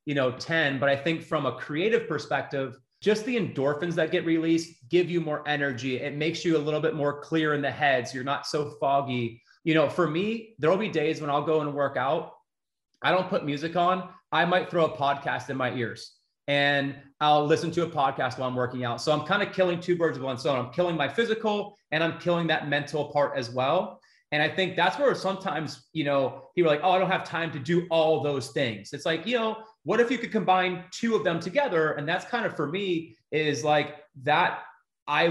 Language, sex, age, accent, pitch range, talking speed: English, male, 30-49, American, 145-185 Hz, 235 wpm